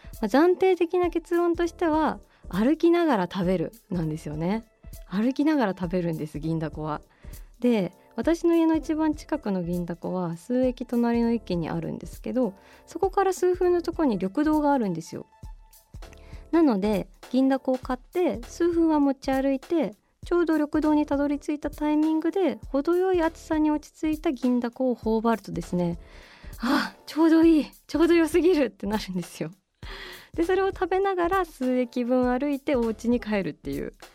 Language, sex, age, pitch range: Japanese, female, 20-39, 200-315 Hz